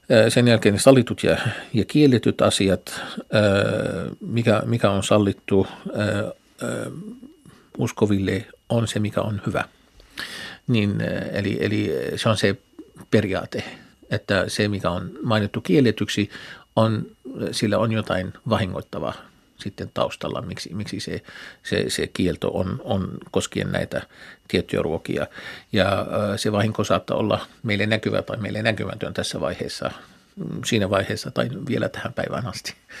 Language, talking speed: Finnish, 125 wpm